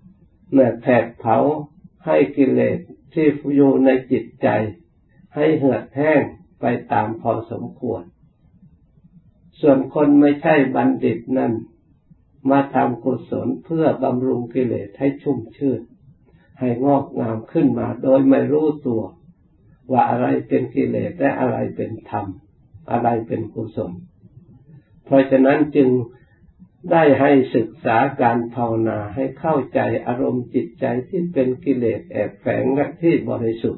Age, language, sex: 60-79, Thai, male